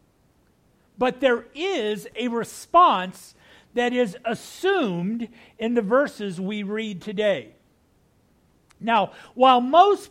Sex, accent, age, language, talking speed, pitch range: male, American, 50-69, English, 100 wpm, 210-290 Hz